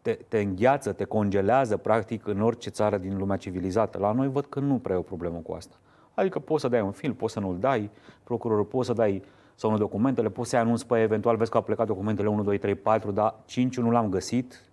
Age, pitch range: 30-49, 100-125 Hz